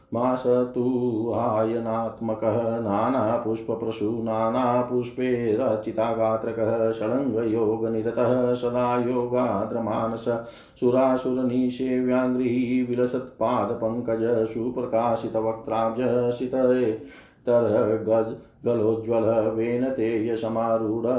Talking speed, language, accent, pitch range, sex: 35 wpm, Hindi, native, 110-125 Hz, male